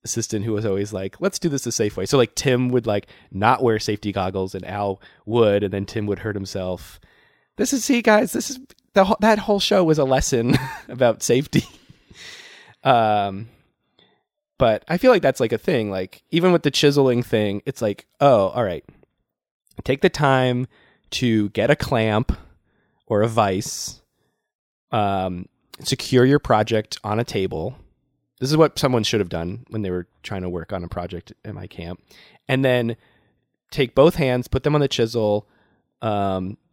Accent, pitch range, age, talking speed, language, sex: American, 100-140 Hz, 20-39, 180 wpm, English, male